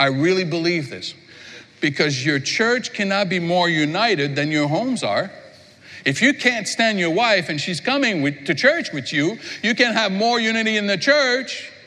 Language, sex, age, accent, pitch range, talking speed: English, male, 60-79, American, 145-235 Hz, 185 wpm